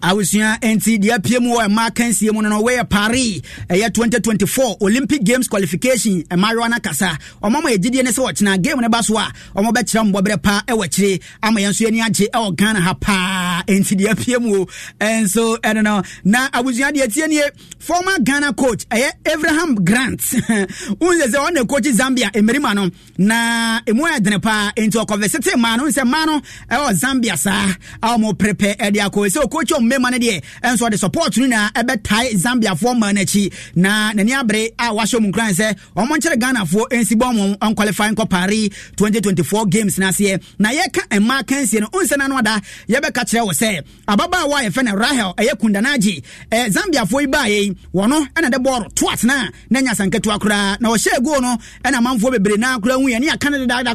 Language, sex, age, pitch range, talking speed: English, male, 30-49, 205-255 Hz, 180 wpm